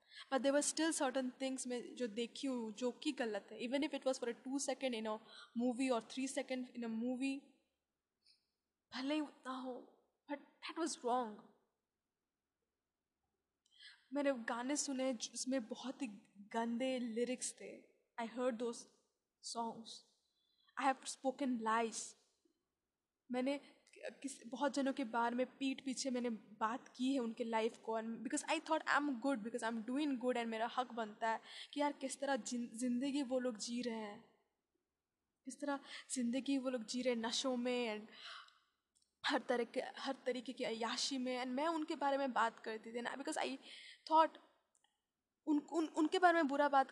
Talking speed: 110 wpm